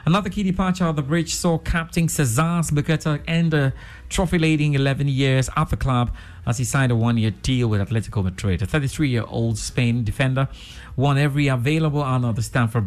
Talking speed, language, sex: 180 wpm, English, male